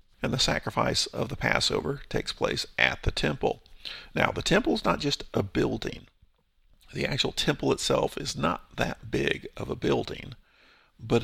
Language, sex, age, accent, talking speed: English, male, 50-69, American, 165 wpm